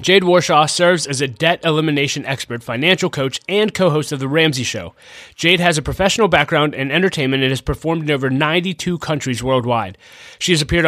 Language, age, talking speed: English, 30-49, 190 wpm